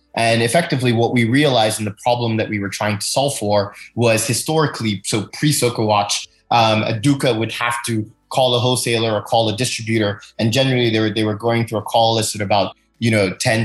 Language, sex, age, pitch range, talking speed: English, male, 20-39, 105-120 Hz, 220 wpm